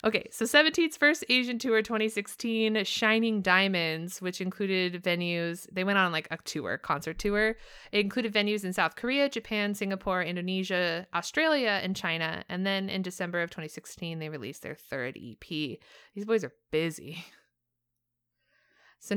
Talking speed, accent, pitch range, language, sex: 150 wpm, American, 175-220 Hz, English, female